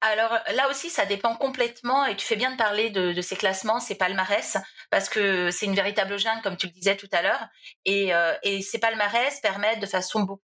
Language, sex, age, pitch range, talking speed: French, female, 30-49, 190-240 Hz, 230 wpm